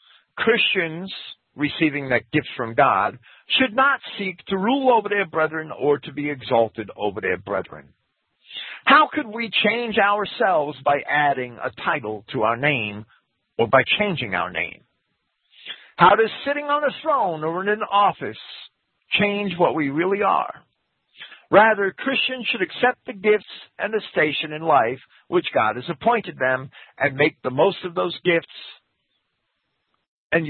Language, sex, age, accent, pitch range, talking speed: English, male, 50-69, American, 125-205 Hz, 150 wpm